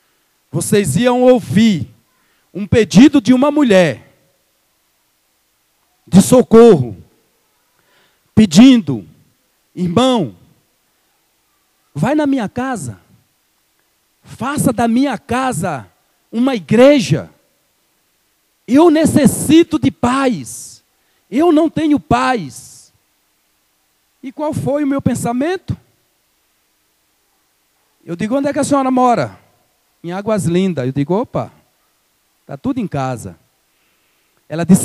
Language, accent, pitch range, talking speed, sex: Portuguese, Brazilian, 175-265 Hz, 95 wpm, male